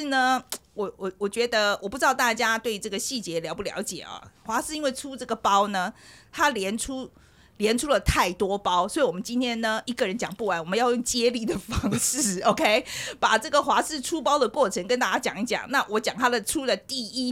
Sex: female